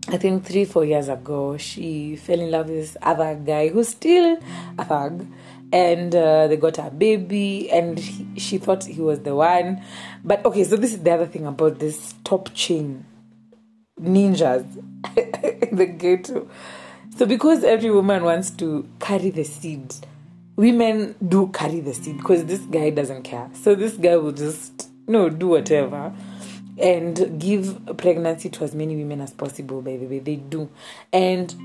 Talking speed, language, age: 175 wpm, English, 30-49